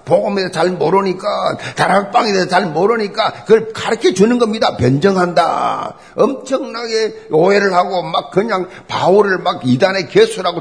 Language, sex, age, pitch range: Korean, male, 50-69, 185-235 Hz